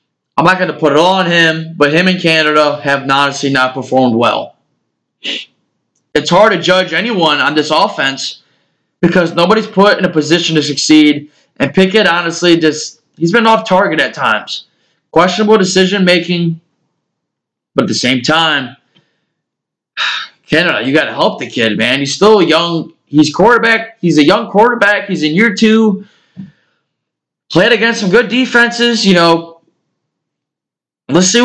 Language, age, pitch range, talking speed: English, 20-39, 155-215 Hz, 155 wpm